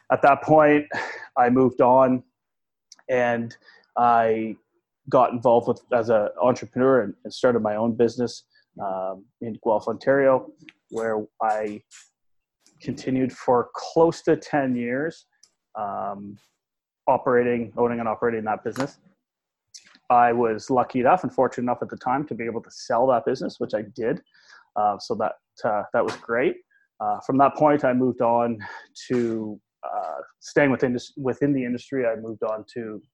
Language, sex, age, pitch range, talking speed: English, male, 30-49, 110-130 Hz, 155 wpm